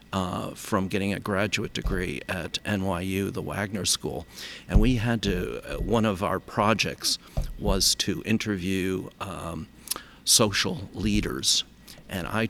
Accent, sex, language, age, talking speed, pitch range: American, male, English, 50-69, 135 wpm, 95-110 Hz